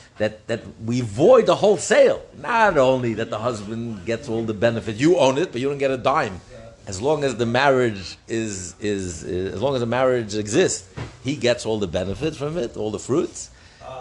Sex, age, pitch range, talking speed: male, 60-79, 105-140 Hz, 210 wpm